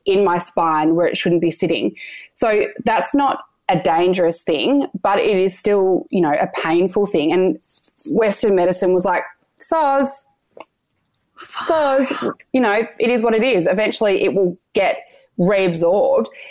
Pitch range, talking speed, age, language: 170-210 Hz, 155 wpm, 20-39, English